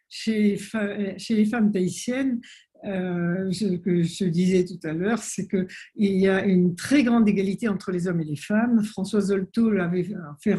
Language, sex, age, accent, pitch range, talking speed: French, female, 50-69, French, 190-235 Hz, 170 wpm